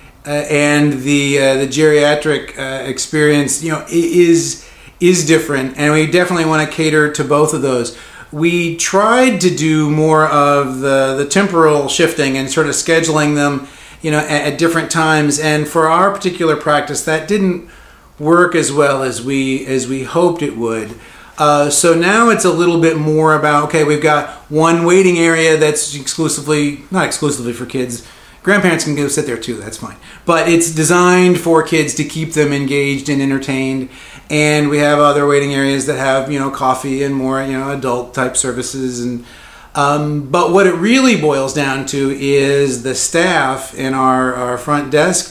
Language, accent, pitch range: English, American, 135-160 Hz